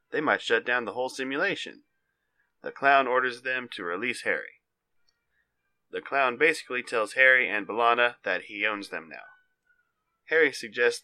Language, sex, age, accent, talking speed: English, male, 30-49, American, 150 wpm